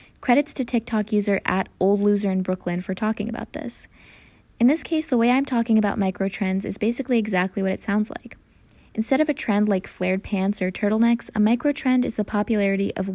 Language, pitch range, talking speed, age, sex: English, 190-225 Hz, 205 wpm, 20-39, female